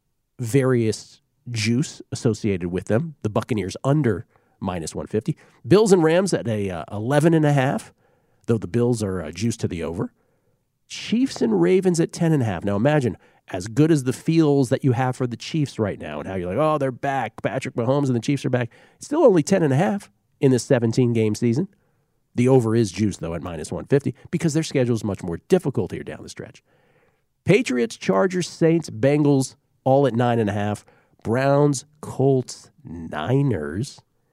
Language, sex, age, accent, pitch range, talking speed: English, male, 50-69, American, 105-140 Hz, 190 wpm